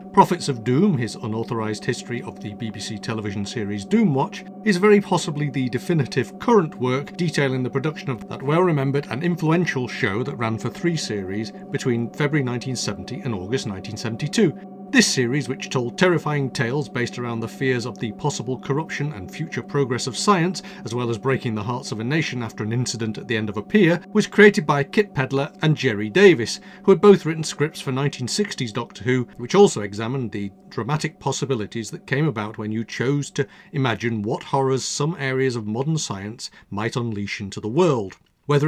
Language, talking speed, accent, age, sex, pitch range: English, 185 wpm, British, 40-59, male, 115-170 Hz